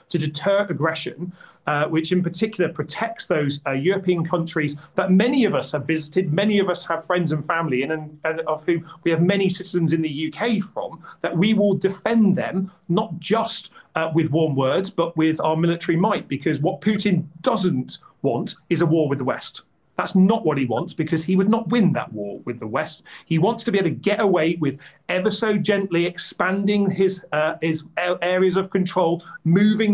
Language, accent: English, British